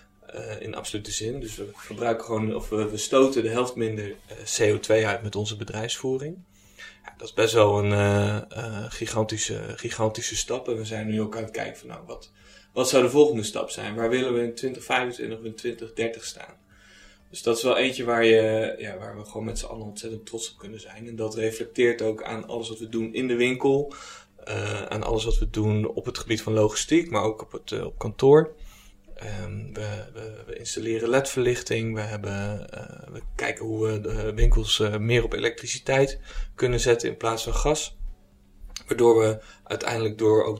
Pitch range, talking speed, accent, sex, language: 105-115 Hz, 200 wpm, Dutch, male, Dutch